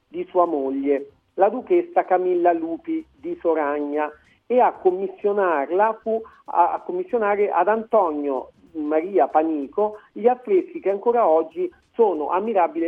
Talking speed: 120 wpm